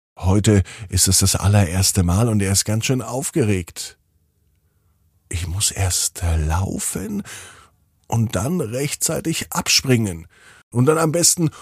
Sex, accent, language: male, German, German